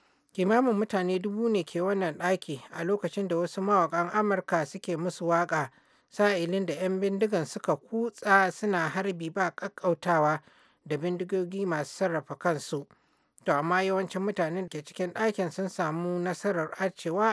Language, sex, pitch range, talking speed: English, male, 170-195 Hz, 150 wpm